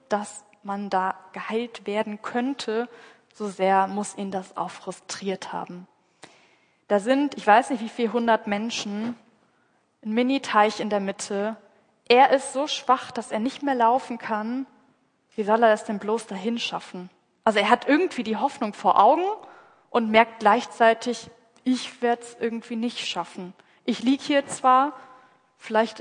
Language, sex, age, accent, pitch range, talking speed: German, female, 20-39, German, 205-240 Hz, 155 wpm